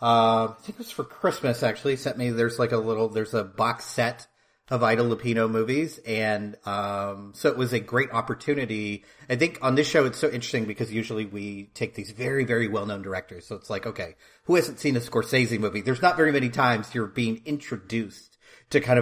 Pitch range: 110-130 Hz